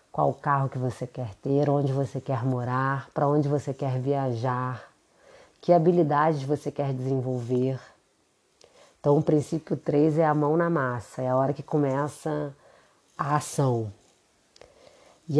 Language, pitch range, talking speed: Portuguese, 135-160 Hz, 145 wpm